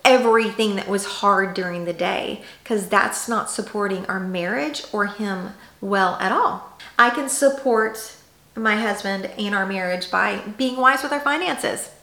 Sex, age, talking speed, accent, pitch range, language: female, 40-59, 160 wpm, American, 195-235 Hz, English